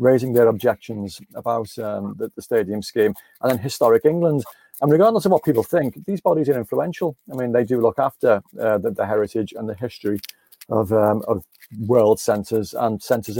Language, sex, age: English, male, 40-59